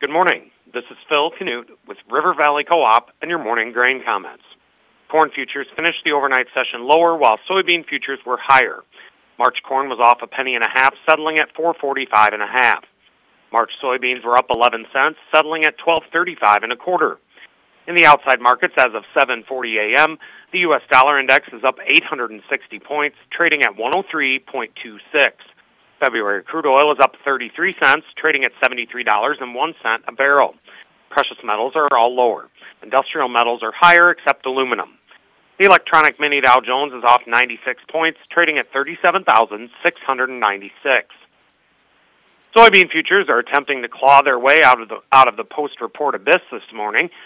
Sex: male